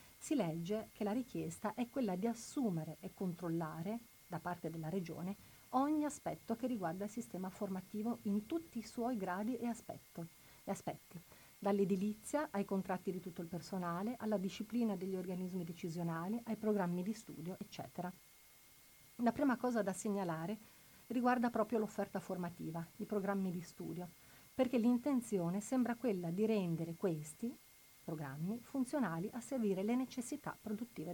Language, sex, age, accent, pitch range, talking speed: Italian, female, 40-59, native, 175-225 Hz, 145 wpm